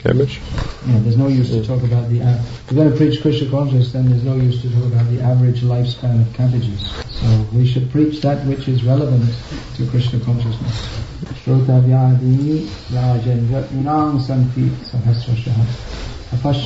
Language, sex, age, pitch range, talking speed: English, male, 50-69, 120-145 Hz, 135 wpm